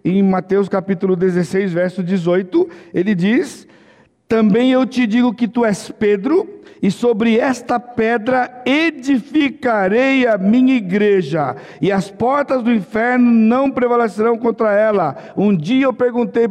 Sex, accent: male, Brazilian